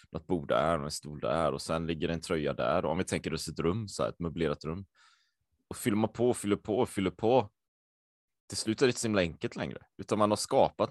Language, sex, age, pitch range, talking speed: Swedish, male, 20-39, 90-130 Hz, 230 wpm